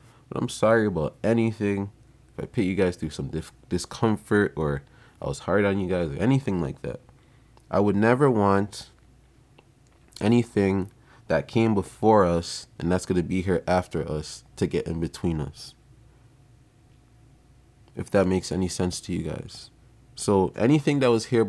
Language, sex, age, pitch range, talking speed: English, male, 20-39, 90-120 Hz, 170 wpm